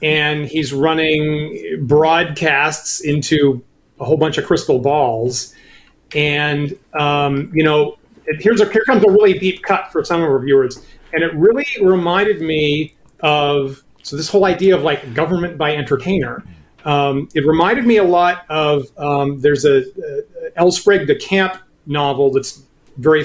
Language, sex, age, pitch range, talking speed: English, male, 40-59, 140-180 Hz, 155 wpm